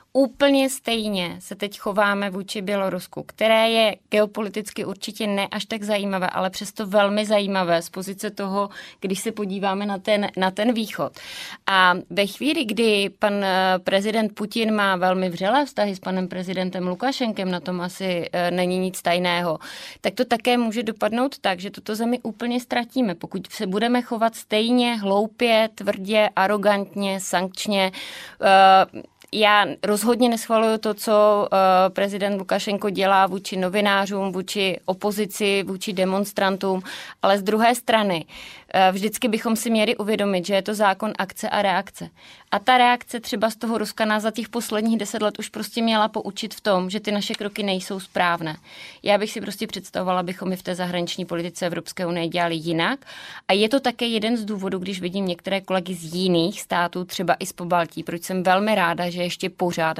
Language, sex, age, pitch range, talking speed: Czech, female, 30-49, 180-215 Hz, 165 wpm